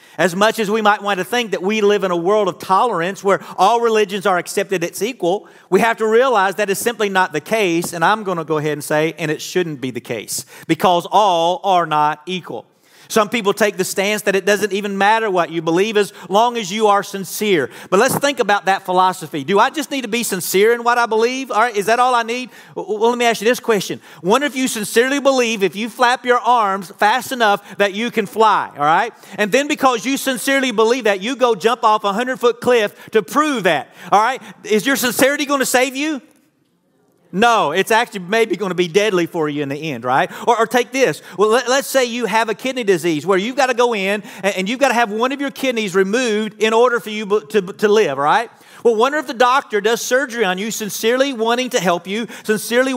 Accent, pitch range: American, 195-240 Hz